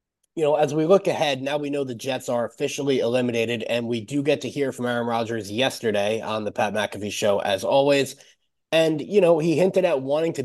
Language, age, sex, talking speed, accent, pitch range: English, 20-39, male, 225 wpm, American, 130-170 Hz